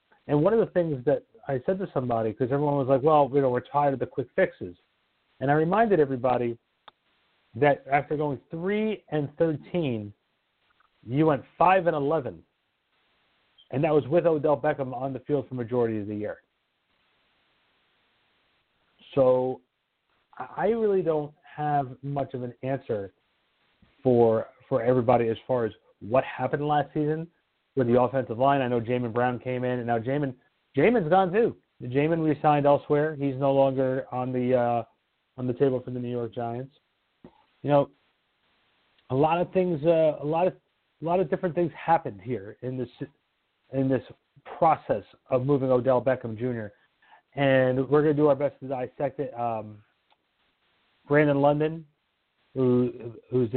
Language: English